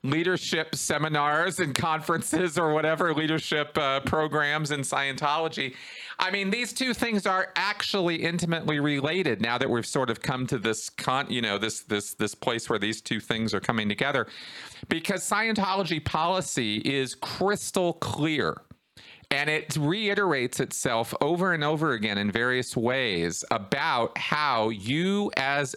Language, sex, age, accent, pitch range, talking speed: English, male, 40-59, American, 120-165 Hz, 145 wpm